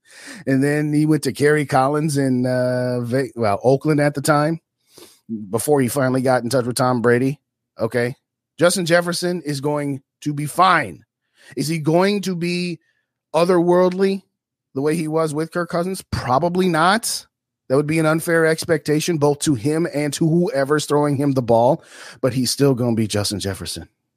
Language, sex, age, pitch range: English, male, 30-49, 110-150 Hz